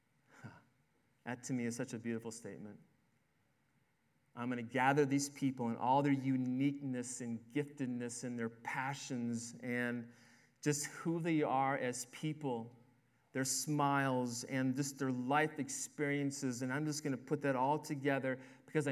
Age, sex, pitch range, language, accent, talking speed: 30-49, male, 120-145 Hz, English, American, 150 wpm